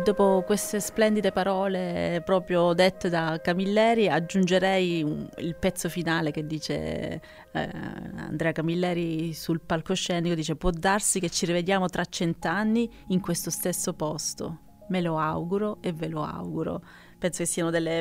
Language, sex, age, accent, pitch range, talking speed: Italian, female, 30-49, native, 170-210 Hz, 140 wpm